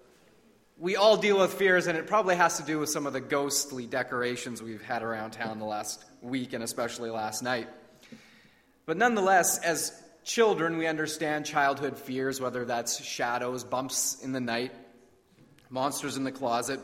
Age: 30-49